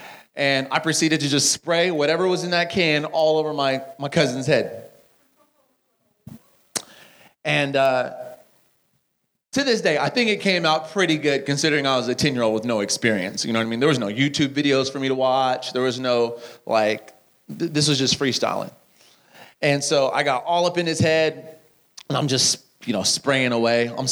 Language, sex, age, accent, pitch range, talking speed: English, male, 30-49, American, 135-205 Hz, 190 wpm